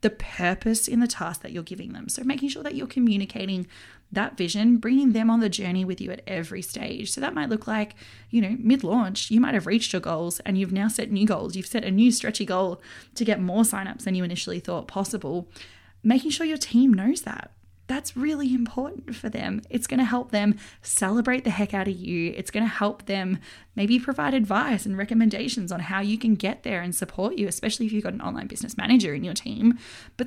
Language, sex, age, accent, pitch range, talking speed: English, female, 20-39, Australian, 185-240 Hz, 225 wpm